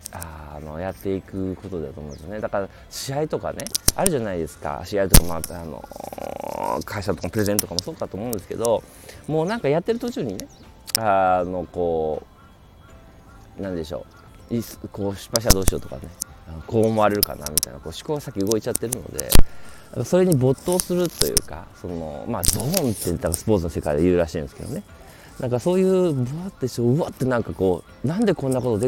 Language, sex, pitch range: Japanese, male, 85-130 Hz